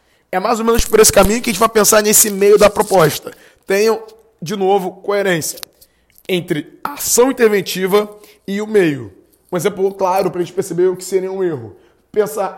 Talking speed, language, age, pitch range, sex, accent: 190 wpm, Portuguese, 20-39, 185-220 Hz, male, Brazilian